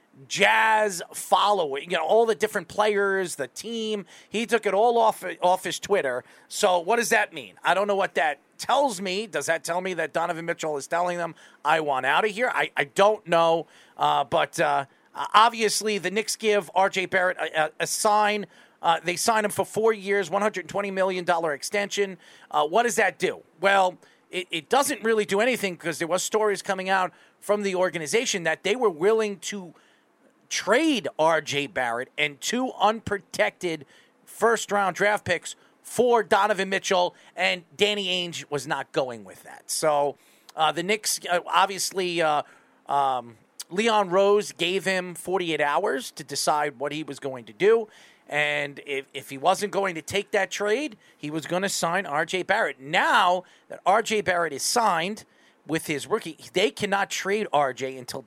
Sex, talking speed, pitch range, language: male, 175 wpm, 160-210 Hz, English